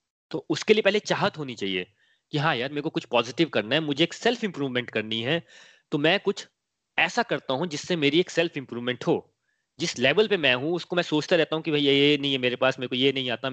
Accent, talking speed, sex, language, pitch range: native, 255 wpm, male, Hindi, 130-175 Hz